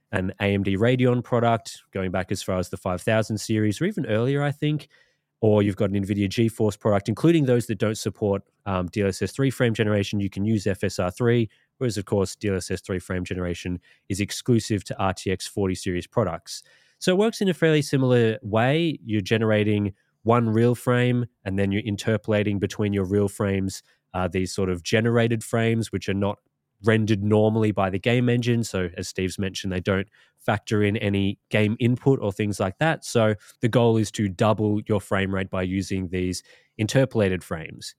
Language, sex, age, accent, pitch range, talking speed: English, male, 20-39, Australian, 100-115 Hz, 185 wpm